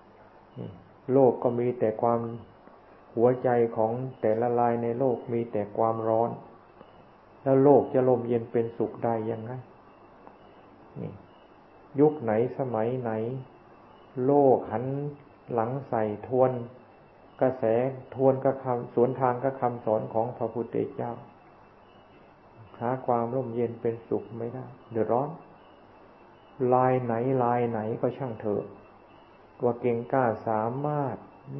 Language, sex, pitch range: Thai, male, 115-130 Hz